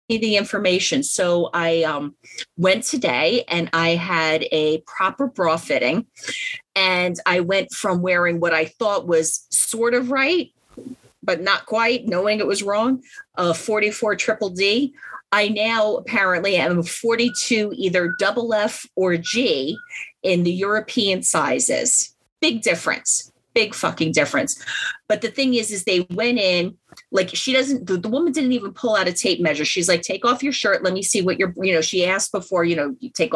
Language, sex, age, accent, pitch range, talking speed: English, female, 30-49, American, 175-235 Hz, 175 wpm